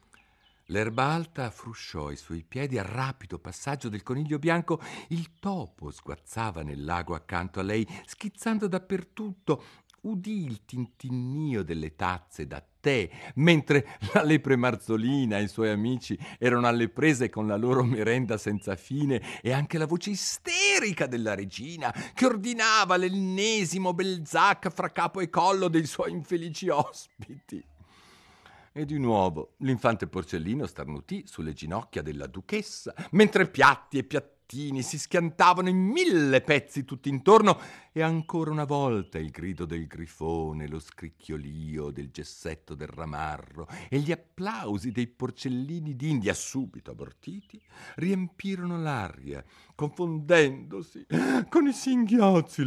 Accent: native